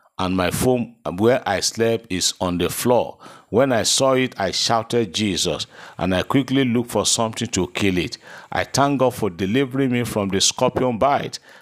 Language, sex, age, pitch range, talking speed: English, male, 50-69, 95-120 Hz, 185 wpm